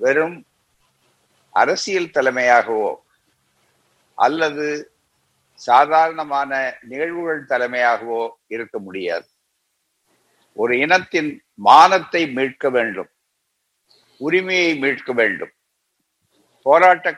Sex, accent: male, native